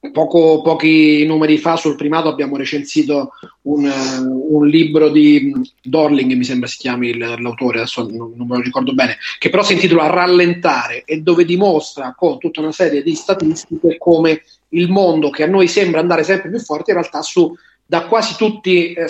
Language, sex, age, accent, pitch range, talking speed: Italian, male, 30-49, native, 155-185 Hz, 185 wpm